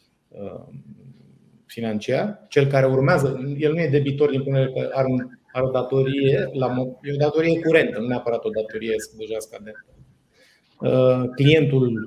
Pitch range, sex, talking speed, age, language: 120-150 Hz, male, 140 wpm, 20-39, Romanian